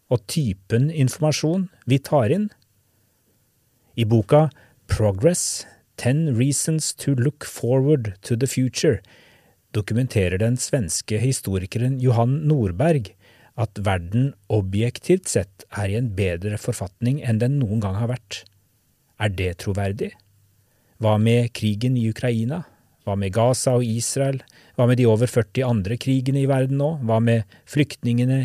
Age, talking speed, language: 30-49, 140 wpm, English